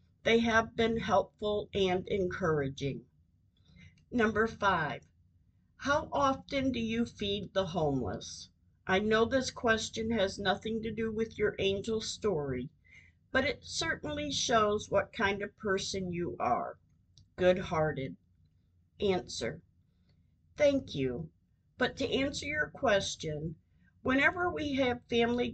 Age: 50-69